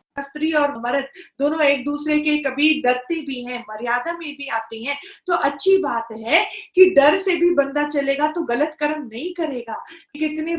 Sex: female